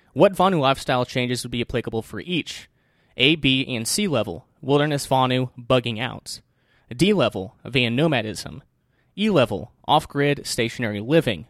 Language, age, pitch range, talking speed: English, 20-39, 115-140 Hz, 140 wpm